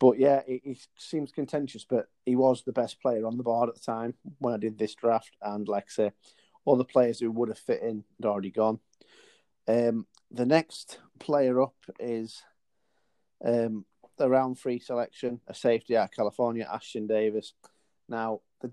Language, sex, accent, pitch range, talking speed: English, male, British, 105-125 Hz, 180 wpm